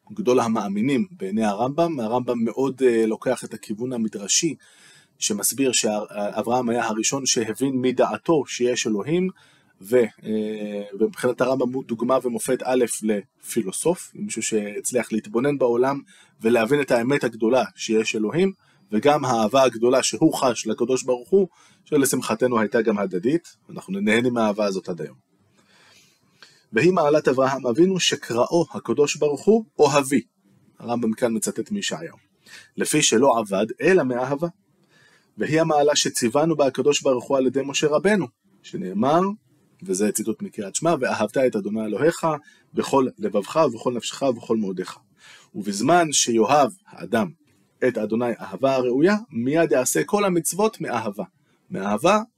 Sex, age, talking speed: male, 20-39, 125 wpm